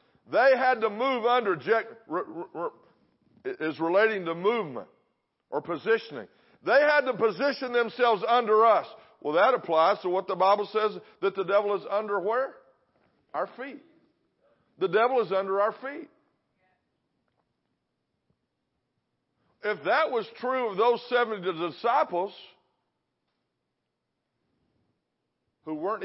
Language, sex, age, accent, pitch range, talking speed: English, male, 50-69, American, 195-260 Hz, 115 wpm